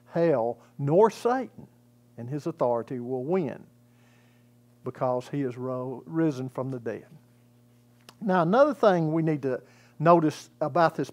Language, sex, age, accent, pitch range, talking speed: English, male, 50-69, American, 120-185 Hz, 130 wpm